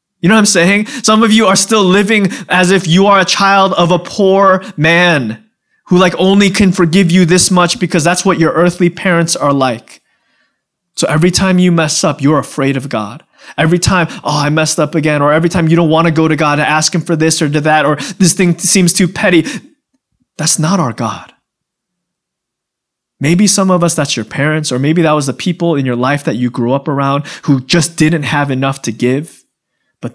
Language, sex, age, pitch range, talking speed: English, male, 20-39, 120-175 Hz, 220 wpm